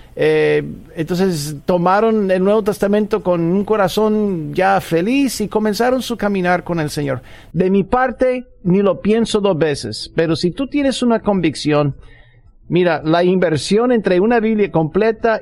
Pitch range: 150-205 Hz